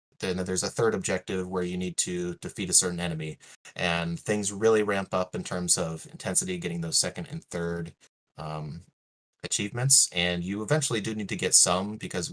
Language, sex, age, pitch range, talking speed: English, male, 20-39, 85-95 Hz, 185 wpm